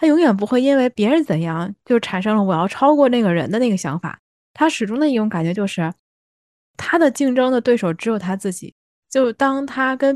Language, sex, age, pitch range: Chinese, female, 20-39, 190-250 Hz